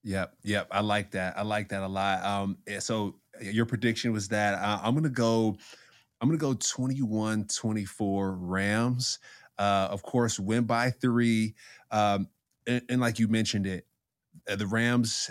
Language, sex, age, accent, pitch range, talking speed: English, male, 20-39, American, 100-115 Hz, 170 wpm